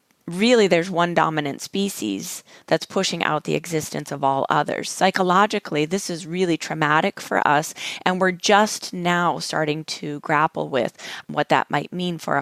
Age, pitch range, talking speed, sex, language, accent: 30-49, 150-180 Hz, 160 wpm, female, English, American